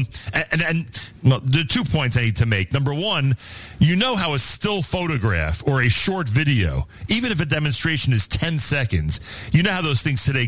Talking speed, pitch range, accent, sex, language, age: 200 wpm, 110-155 Hz, American, male, English, 40-59